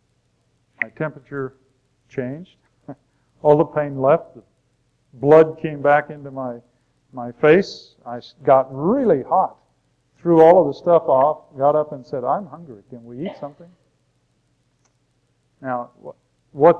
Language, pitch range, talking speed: English, 130-160 Hz, 130 wpm